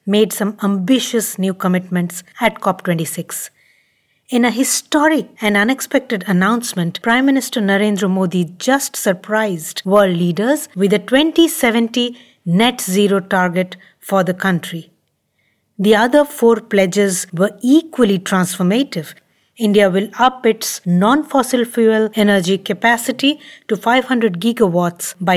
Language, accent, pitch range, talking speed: English, Indian, 190-255 Hz, 115 wpm